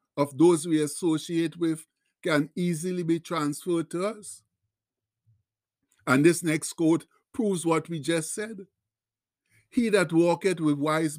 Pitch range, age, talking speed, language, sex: 145-180 Hz, 60-79, 135 wpm, English, male